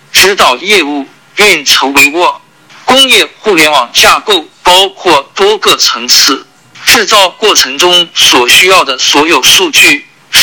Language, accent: Chinese, native